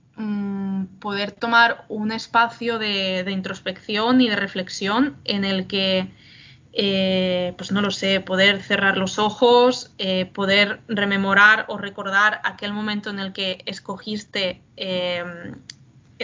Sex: female